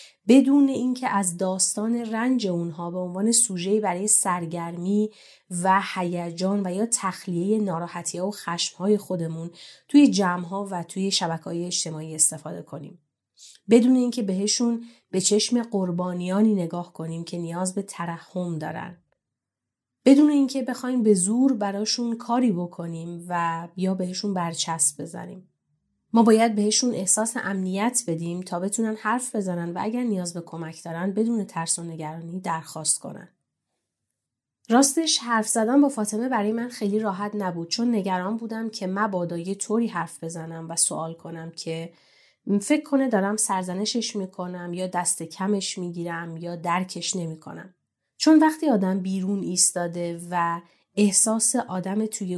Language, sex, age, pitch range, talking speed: Persian, female, 30-49, 170-220 Hz, 135 wpm